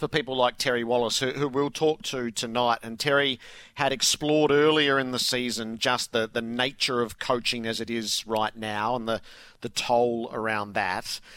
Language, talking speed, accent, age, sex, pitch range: English, 190 wpm, Australian, 40-59, male, 120-145 Hz